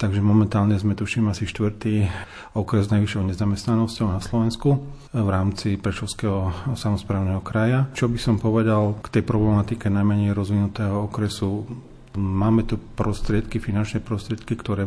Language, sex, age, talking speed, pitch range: Slovak, male, 40-59, 135 wpm, 95-110 Hz